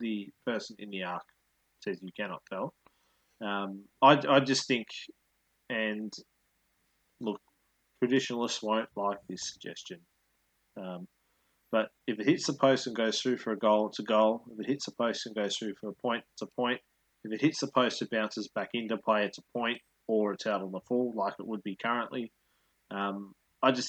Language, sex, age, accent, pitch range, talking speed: English, male, 20-39, Australian, 105-130 Hz, 195 wpm